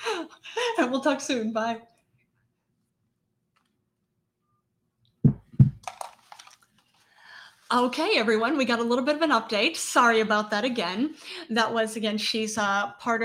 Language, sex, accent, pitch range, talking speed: English, female, American, 200-245 Hz, 115 wpm